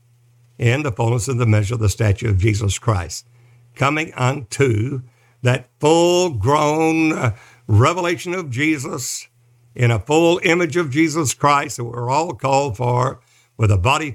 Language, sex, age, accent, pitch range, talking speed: English, male, 60-79, American, 115-145 Hz, 145 wpm